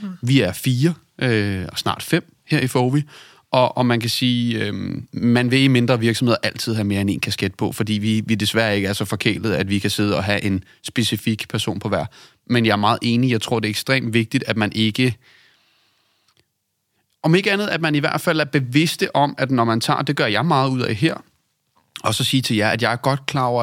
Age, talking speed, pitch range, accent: 30-49, 240 wpm, 110-135 Hz, native